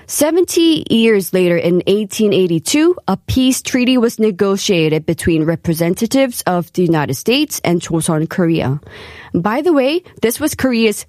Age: 20-39